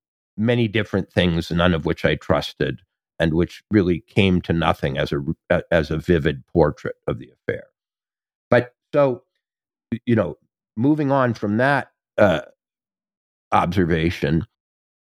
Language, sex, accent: English, male, American